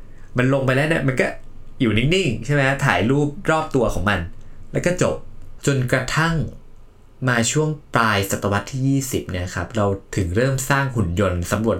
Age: 20-39